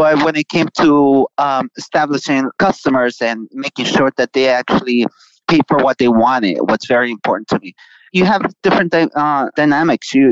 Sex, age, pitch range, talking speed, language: male, 30-49, 130-165 Hz, 175 wpm, English